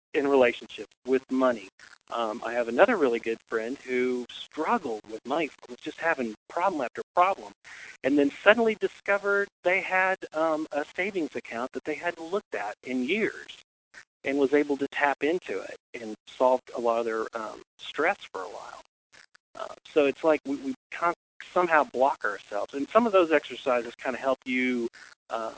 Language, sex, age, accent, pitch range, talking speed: English, male, 40-59, American, 120-170 Hz, 180 wpm